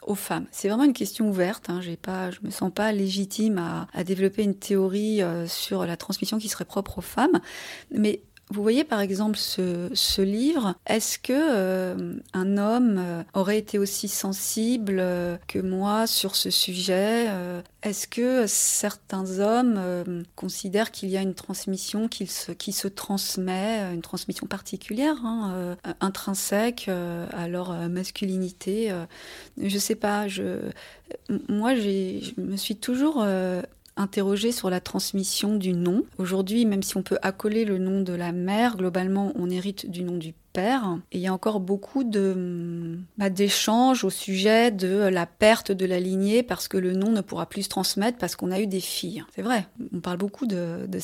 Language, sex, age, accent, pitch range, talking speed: French, female, 30-49, French, 185-215 Hz, 180 wpm